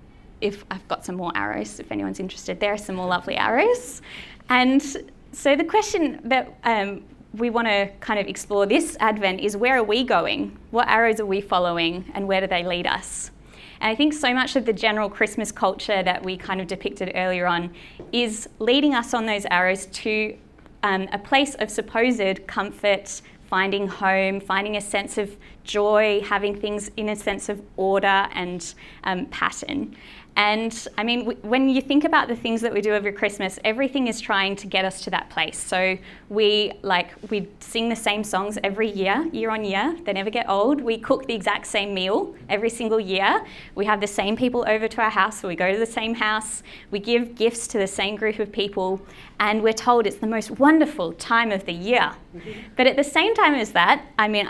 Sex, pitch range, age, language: female, 195-230 Hz, 20-39, English